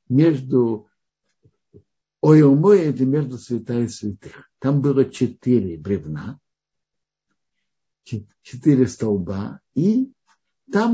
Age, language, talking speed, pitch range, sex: 60-79, Russian, 80 wpm, 115-150 Hz, male